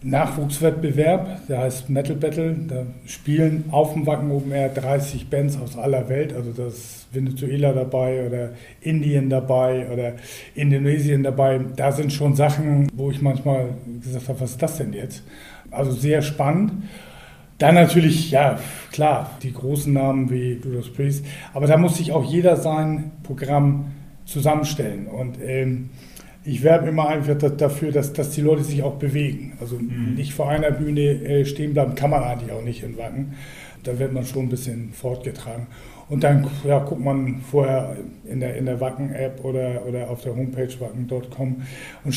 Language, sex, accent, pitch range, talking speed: German, male, German, 130-155 Hz, 160 wpm